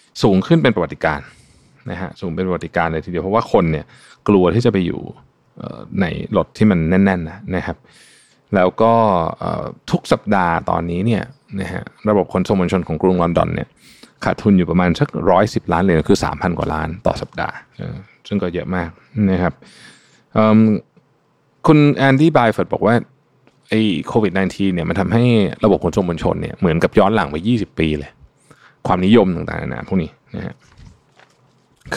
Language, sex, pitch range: Thai, male, 85-110 Hz